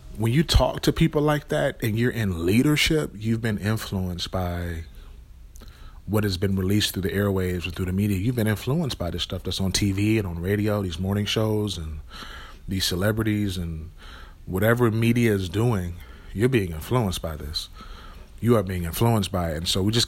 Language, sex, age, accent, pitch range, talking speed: English, male, 30-49, American, 90-105 Hz, 190 wpm